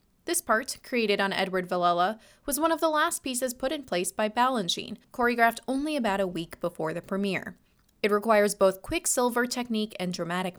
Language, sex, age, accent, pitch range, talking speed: English, female, 20-39, American, 185-245 Hz, 180 wpm